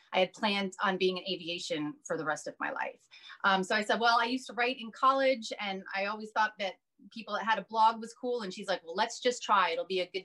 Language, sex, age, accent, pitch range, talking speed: English, female, 30-49, American, 185-245 Hz, 275 wpm